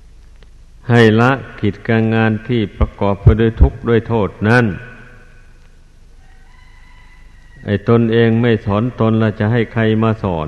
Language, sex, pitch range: Thai, male, 95-115 Hz